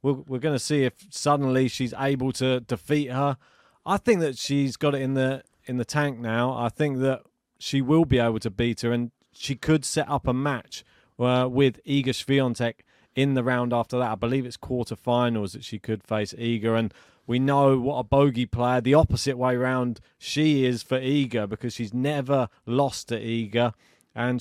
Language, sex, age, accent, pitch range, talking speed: English, male, 30-49, British, 115-140 Hz, 195 wpm